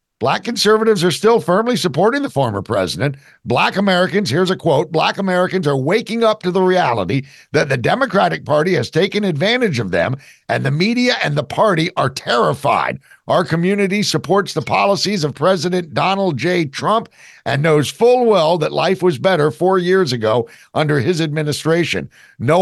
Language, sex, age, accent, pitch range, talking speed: English, male, 50-69, American, 140-185 Hz, 170 wpm